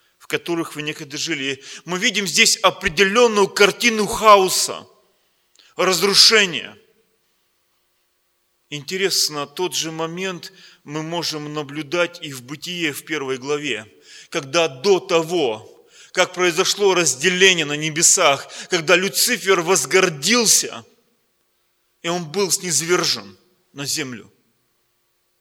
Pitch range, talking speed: 130-185 Hz, 100 wpm